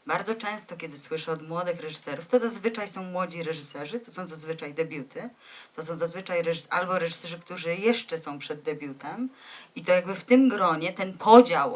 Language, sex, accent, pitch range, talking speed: Polish, female, native, 165-235 Hz, 180 wpm